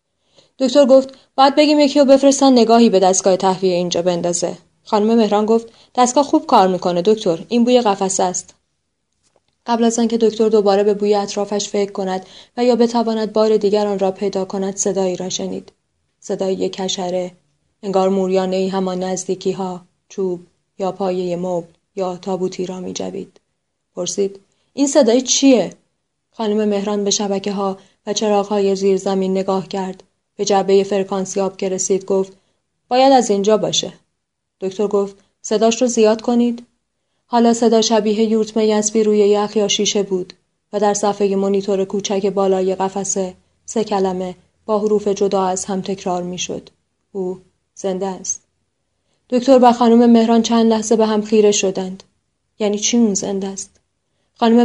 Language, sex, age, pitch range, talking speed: Persian, female, 20-39, 190-225 Hz, 150 wpm